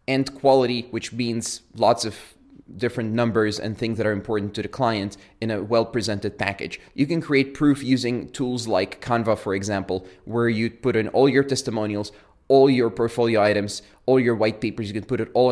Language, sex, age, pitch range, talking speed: English, male, 20-39, 110-130 Hz, 195 wpm